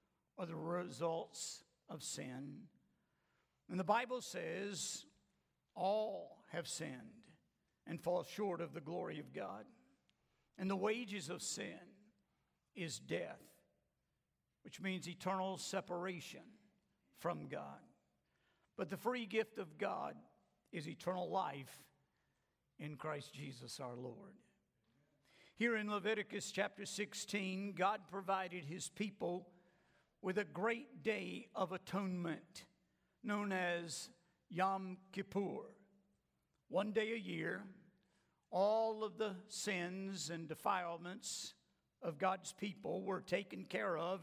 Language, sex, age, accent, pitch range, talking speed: English, male, 60-79, American, 180-210 Hz, 115 wpm